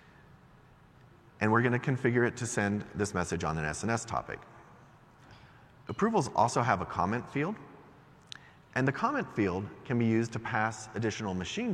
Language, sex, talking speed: English, male, 155 wpm